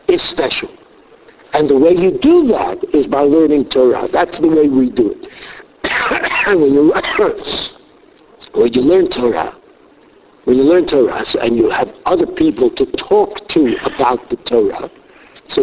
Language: English